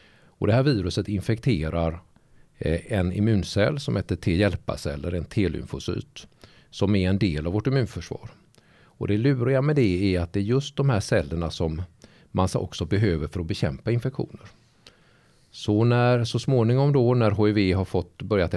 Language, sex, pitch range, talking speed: Swedish, male, 80-110 Hz, 170 wpm